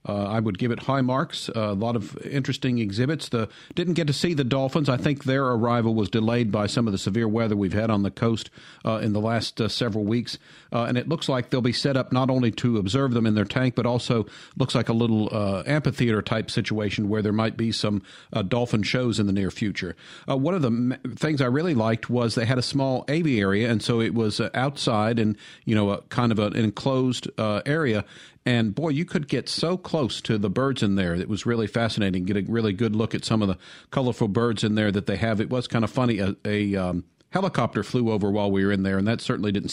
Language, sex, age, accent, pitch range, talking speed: English, male, 50-69, American, 105-125 Hz, 250 wpm